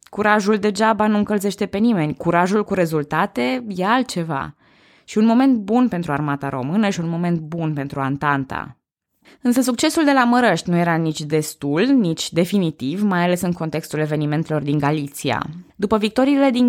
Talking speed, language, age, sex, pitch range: 160 wpm, Romanian, 20-39, female, 150-205 Hz